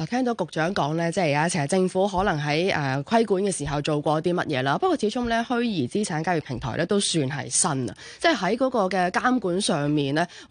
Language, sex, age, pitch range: Chinese, female, 20-39, 155-205 Hz